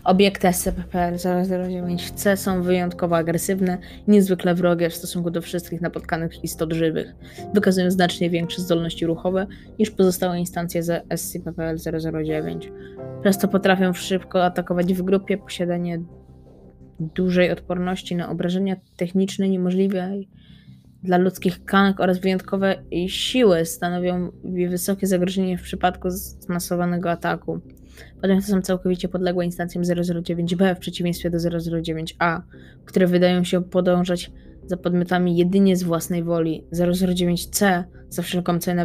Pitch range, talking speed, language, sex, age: 170-185 Hz, 120 wpm, Polish, female, 20-39